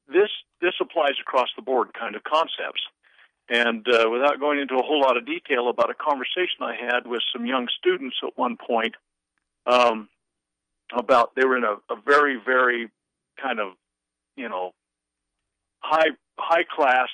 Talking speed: 150 wpm